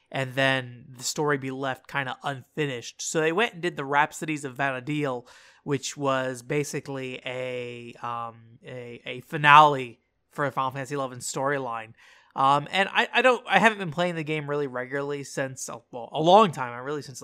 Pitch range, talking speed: 135-175 Hz, 185 wpm